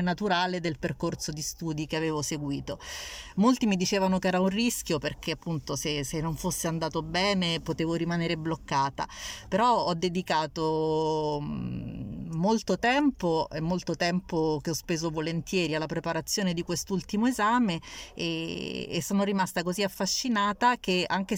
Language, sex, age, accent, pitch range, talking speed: Italian, female, 30-49, native, 165-205 Hz, 145 wpm